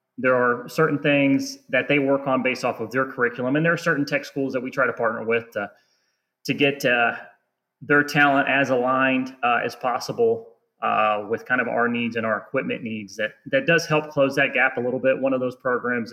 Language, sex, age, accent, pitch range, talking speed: English, male, 30-49, American, 120-145 Hz, 225 wpm